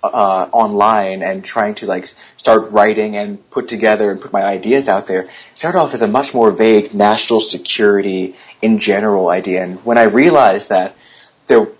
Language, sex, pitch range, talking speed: English, male, 105-130 Hz, 180 wpm